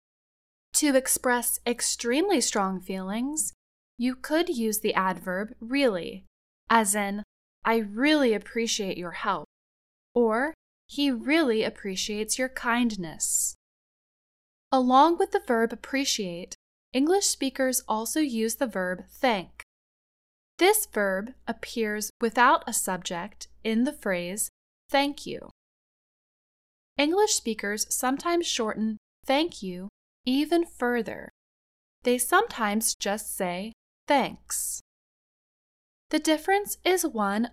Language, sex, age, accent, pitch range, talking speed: English, female, 10-29, American, 205-280 Hz, 100 wpm